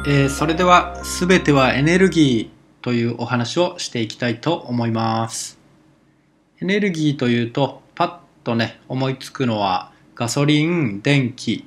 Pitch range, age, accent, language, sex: 120-155 Hz, 20-39, native, Japanese, male